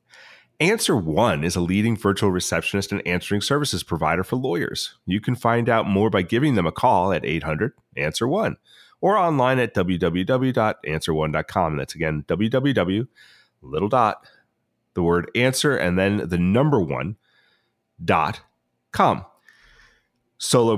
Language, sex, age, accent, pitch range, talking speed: English, male, 30-49, American, 90-120 Hz, 130 wpm